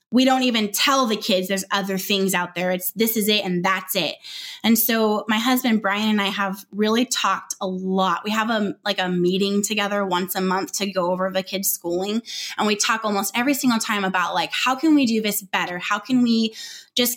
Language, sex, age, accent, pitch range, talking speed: English, female, 20-39, American, 195-235 Hz, 225 wpm